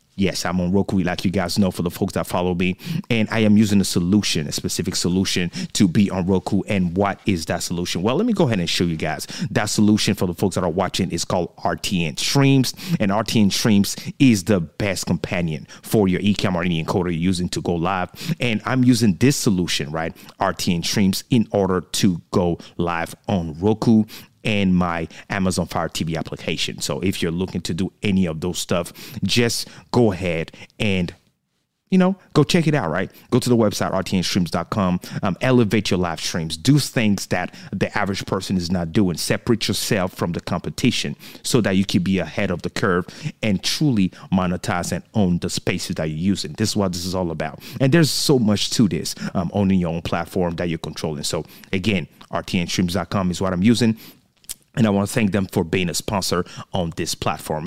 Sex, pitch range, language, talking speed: male, 90-115 Hz, English, 205 wpm